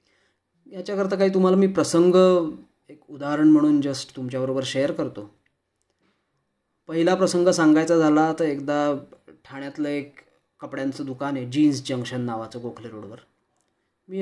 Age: 20-39